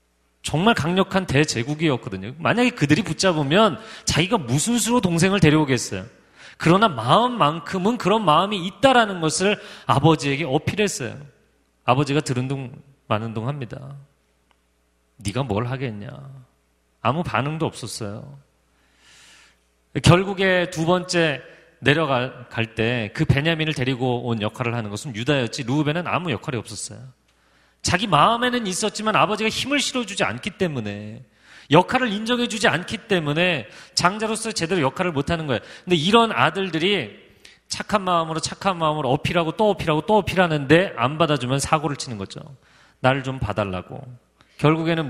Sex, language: male, Korean